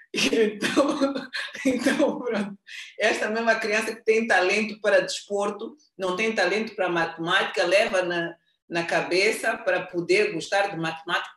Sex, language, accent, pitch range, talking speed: female, Portuguese, Brazilian, 170-210 Hz, 125 wpm